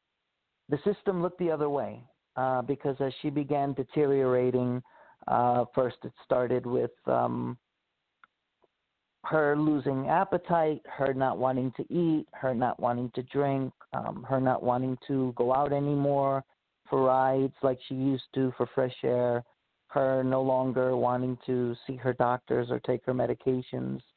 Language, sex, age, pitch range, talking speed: English, male, 40-59, 125-150 Hz, 150 wpm